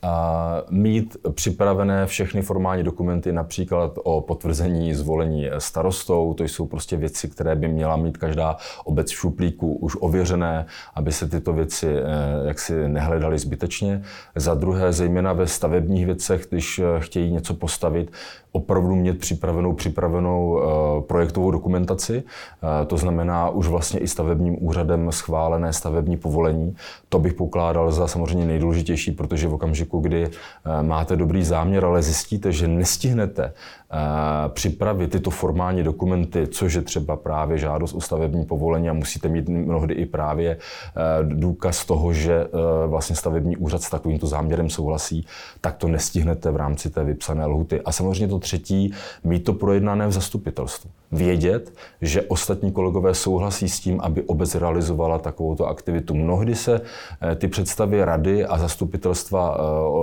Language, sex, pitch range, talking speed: Czech, male, 80-90 Hz, 140 wpm